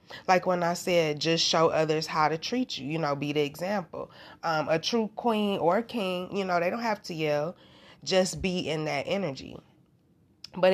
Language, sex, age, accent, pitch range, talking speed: English, female, 20-39, American, 155-185 Hz, 200 wpm